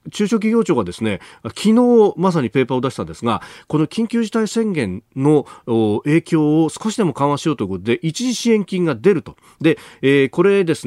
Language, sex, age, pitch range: Japanese, male, 40-59, 120-190 Hz